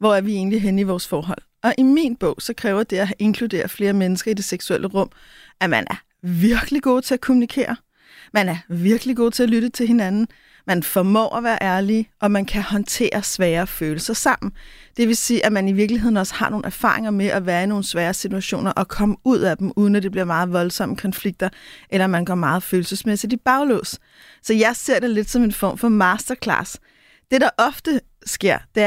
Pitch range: 190-235 Hz